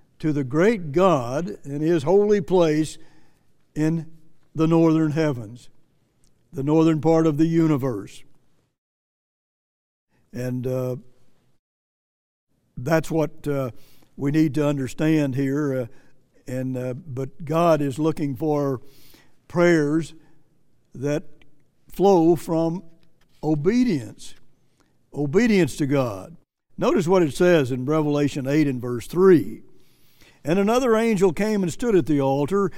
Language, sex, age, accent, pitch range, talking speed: English, male, 60-79, American, 145-185 Hz, 115 wpm